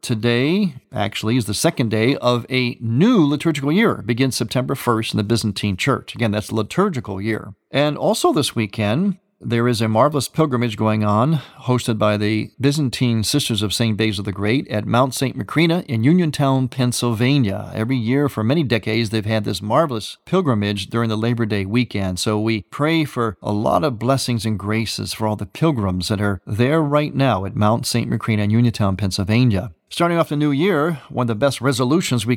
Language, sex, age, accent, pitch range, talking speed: English, male, 40-59, American, 110-145 Hz, 195 wpm